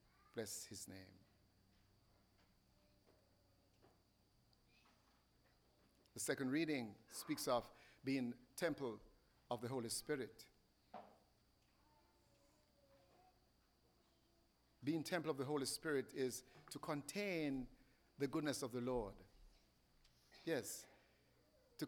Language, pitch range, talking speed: English, 115-150 Hz, 80 wpm